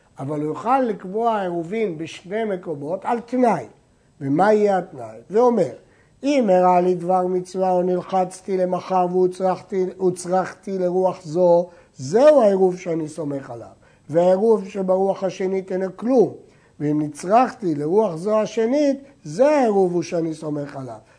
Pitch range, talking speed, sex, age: 165-240 Hz, 125 wpm, male, 60-79